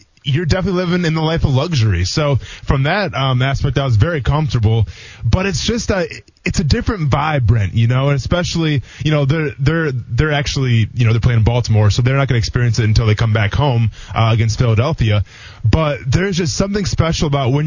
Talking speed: 215 wpm